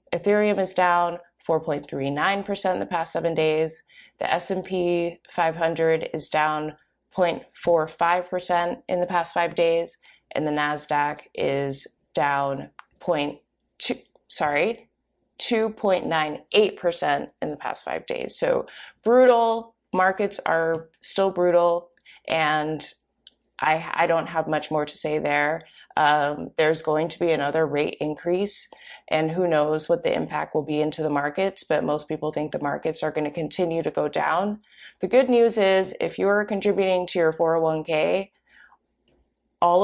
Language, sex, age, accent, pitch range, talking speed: English, female, 20-39, American, 155-190 Hz, 140 wpm